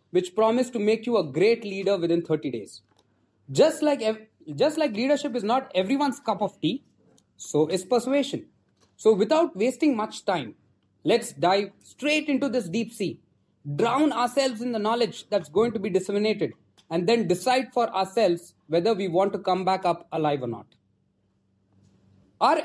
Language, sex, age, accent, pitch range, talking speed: English, male, 20-39, Indian, 160-230 Hz, 165 wpm